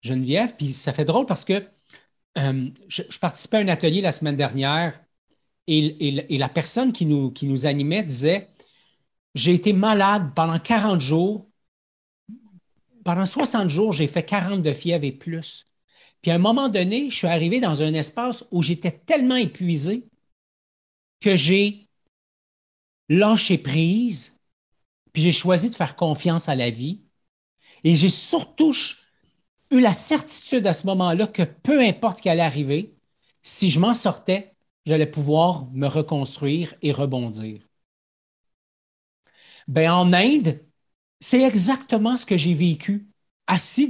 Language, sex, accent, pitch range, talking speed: French, male, Canadian, 150-205 Hz, 145 wpm